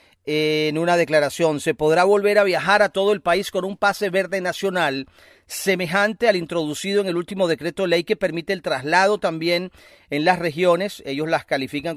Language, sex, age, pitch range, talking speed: Spanish, male, 40-59, 150-195 Hz, 180 wpm